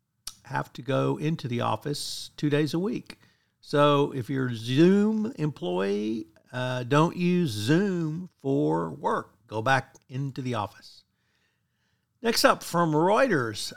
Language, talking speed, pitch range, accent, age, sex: English, 135 wpm, 120-155 Hz, American, 50-69, male